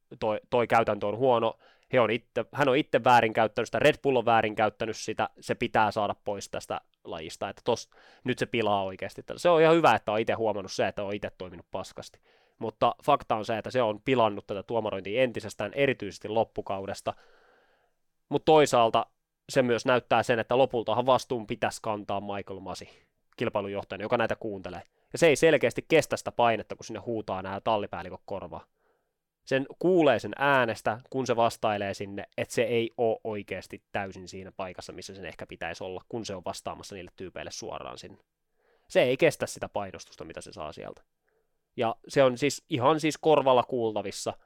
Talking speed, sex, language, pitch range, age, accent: 175 wpm, male, Finnish, 100-130 Hz, 20-39, native